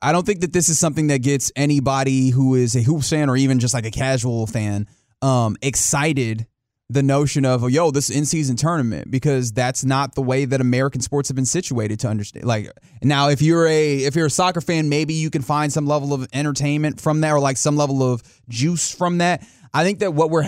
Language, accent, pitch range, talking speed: English, American, 130-155 Hz, 230 wpm